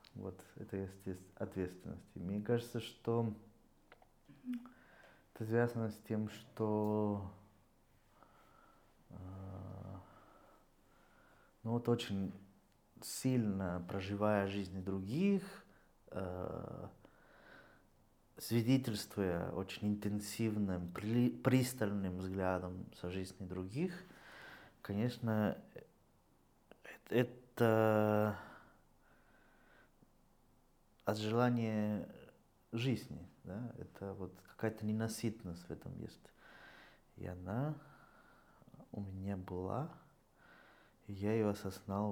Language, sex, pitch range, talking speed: Russian, male, 95-110 Hz, 75 wpm